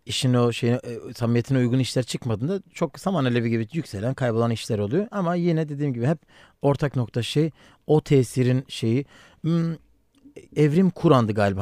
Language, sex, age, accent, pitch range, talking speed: Turkish, male, 40-59, native, 115-145 Hz, 150 wpm